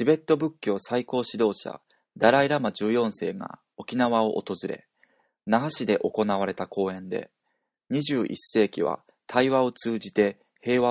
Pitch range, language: 105-125 Hz, Japanese